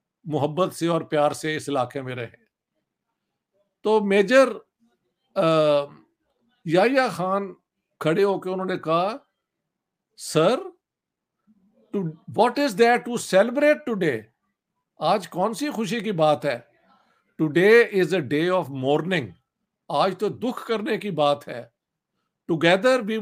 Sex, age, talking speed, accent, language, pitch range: male, 60-79, 120 wpm, Indian, English, 165-220 Hz